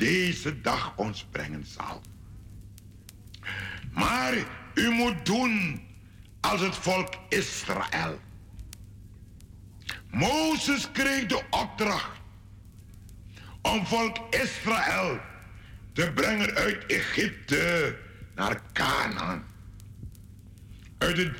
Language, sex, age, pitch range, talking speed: Dutch, male, 60-79, 100-125 Hz, 80 wpm